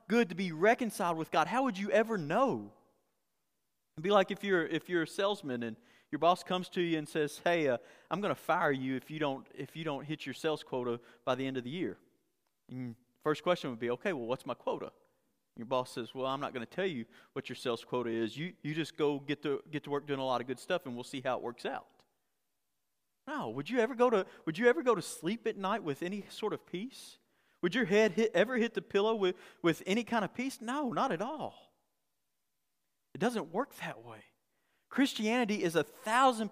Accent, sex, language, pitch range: American, male, English, 150-215 Hz